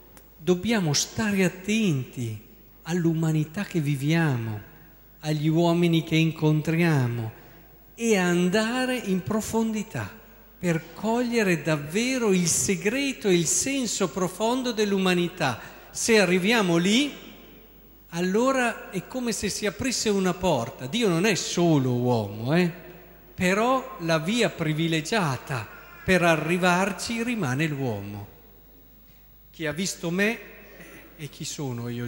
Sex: male